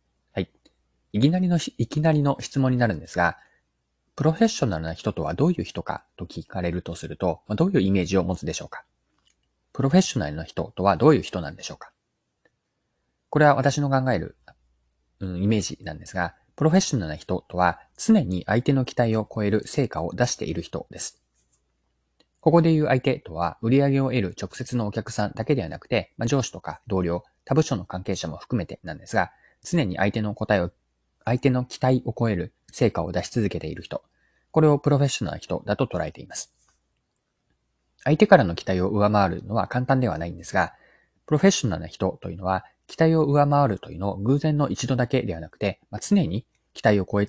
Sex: male